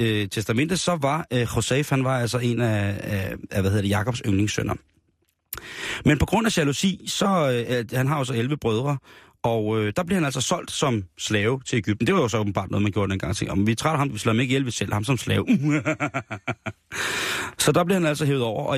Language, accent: Danish, native